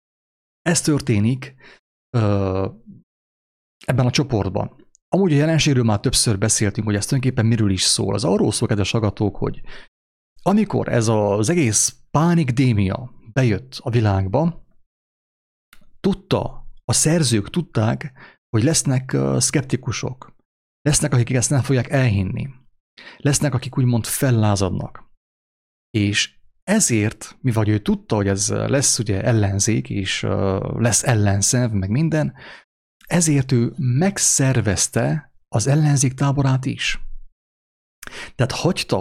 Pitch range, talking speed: 105-140 Hz, 110 wpm